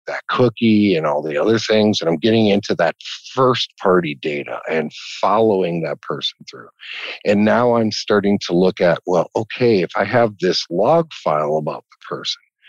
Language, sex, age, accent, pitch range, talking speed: English, male, 50-69, American, 95-120 Hz, 175 wpm